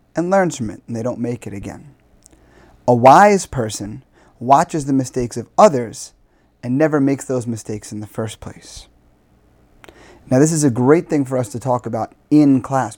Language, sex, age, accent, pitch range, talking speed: English, male, 30-49, American, 115-140 Hz, 185 wpm